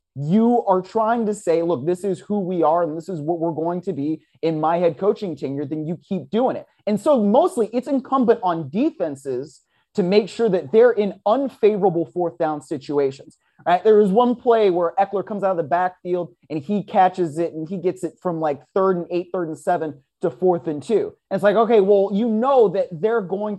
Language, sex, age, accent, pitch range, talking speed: English, male, 30-49, American, 165-210 Hz, 225 wpm